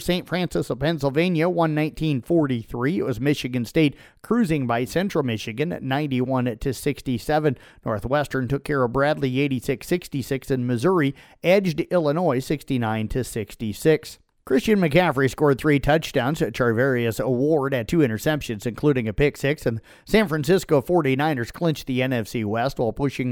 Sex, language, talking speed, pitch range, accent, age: male, English, 140 wpm, 125-155 Hz, American, 50-69